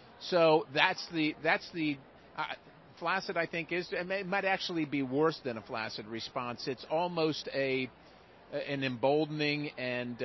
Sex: male